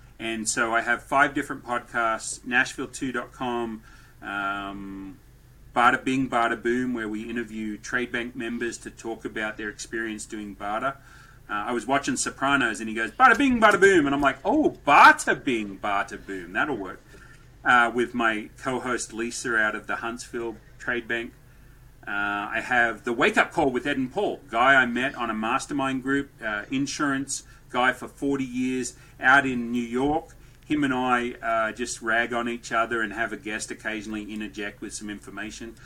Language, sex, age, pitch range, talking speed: English, male, 30-49, 115-140 Hz, 175 wpm